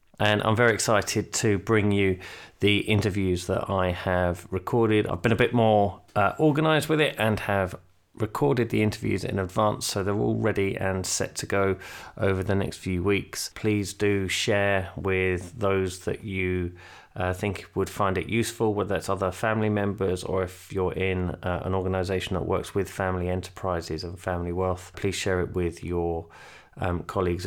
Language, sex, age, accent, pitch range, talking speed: English, male, 30-49, British, 90-100 Hz, 180 wpm